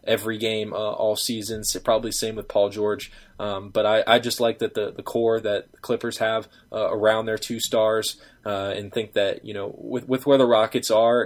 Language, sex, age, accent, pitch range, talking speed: English, male, 10-29, American, 105-115 Hz, 225 wpm